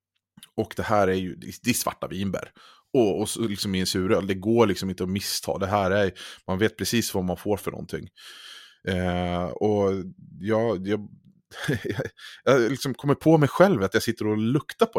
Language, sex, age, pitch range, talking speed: Swedish, male, 30-49, 95-120 Hz, 200 wpm